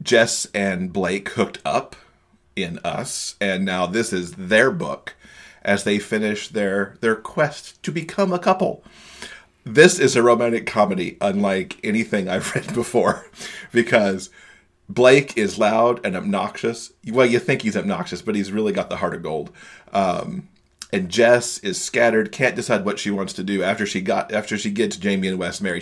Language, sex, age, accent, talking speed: English, male, 40-59, American, 170 wpm